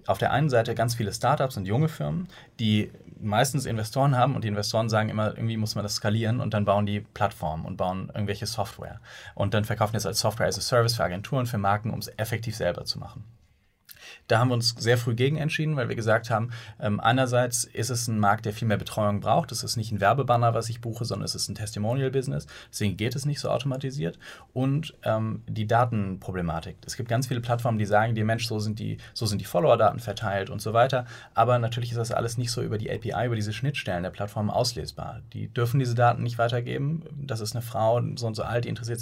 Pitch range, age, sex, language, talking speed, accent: 105-125 Hz, 30-49, male, German, 225 wpm, German